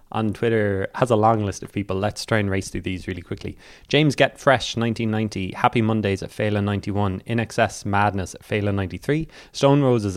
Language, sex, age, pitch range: English, male, 20-39, 95-115 Hz